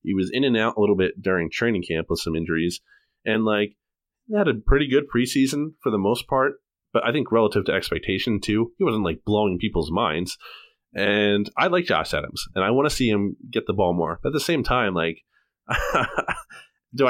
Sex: male